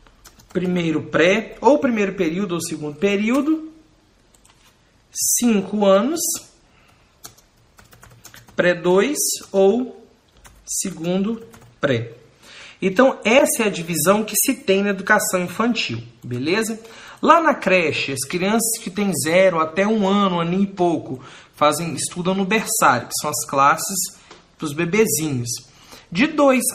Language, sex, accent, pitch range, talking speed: Portuguese, male, Brazilian, 155-210 Hz, 120 wpm